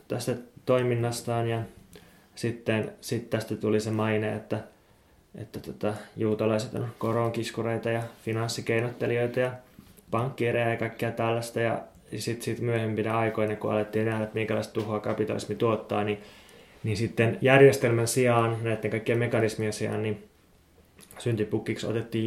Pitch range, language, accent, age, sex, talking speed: 110-125 Hz, Finnish, native, 20-39, male, 125 wpm